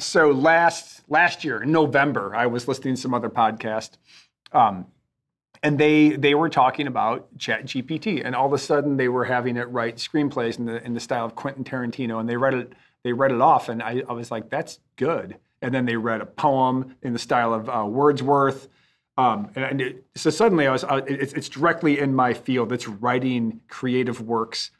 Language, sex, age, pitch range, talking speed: English, male, 40-59, 120-145 Hz, 205 wpm